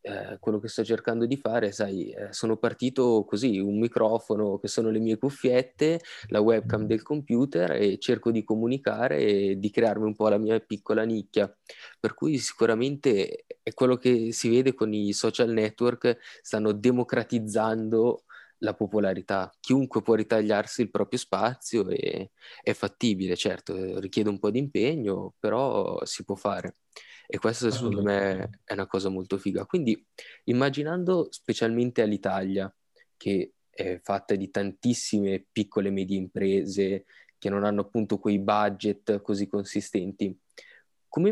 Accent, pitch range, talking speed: native, 100-115 Hz, 150 wpm